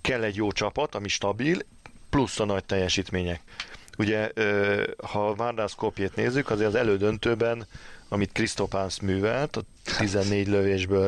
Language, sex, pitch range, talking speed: Hungarian, male, 95-110 Hz, 130 wpm